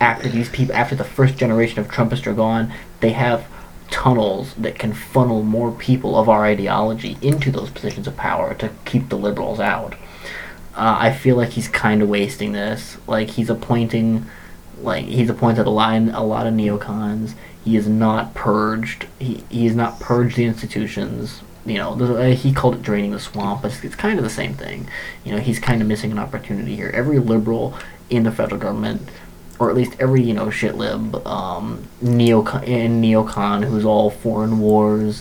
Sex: male